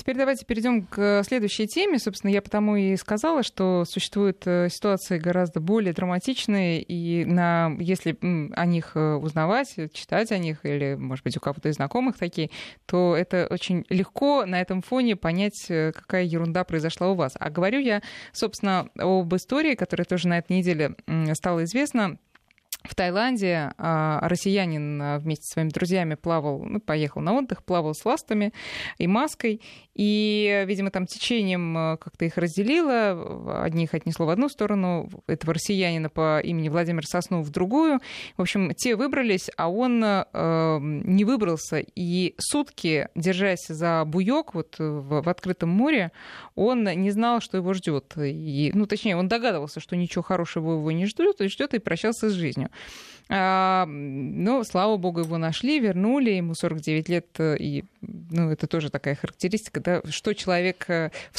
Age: 20-39